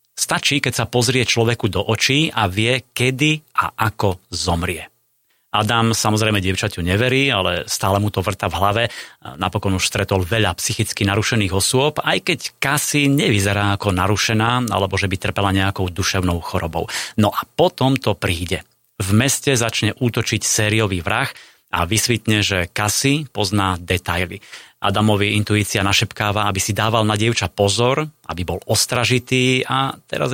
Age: 30-49